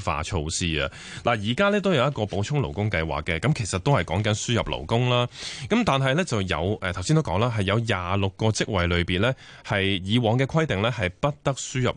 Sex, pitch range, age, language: male, 90-130 Hz, 20-39, Chinese